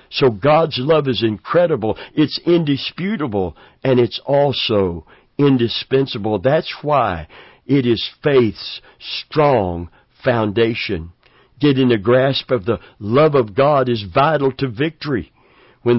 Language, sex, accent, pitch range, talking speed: English, male, American, 110-130 Hz, 115 wpm